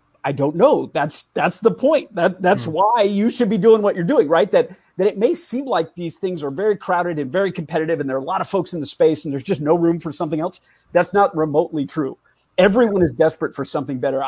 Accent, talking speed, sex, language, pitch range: American, 250 wpm, male, English, 160-210 Hz